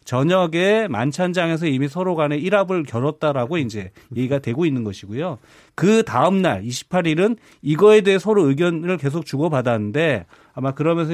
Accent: native